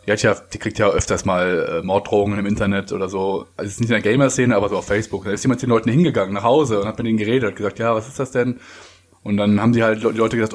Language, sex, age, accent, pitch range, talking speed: German, male, 20-39, German, 95-120 Hz, 290 wpm